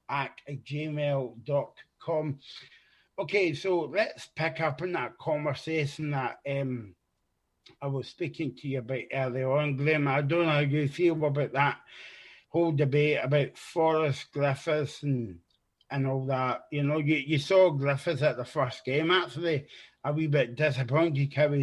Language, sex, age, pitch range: English, male, 30-49, 135-160 Hz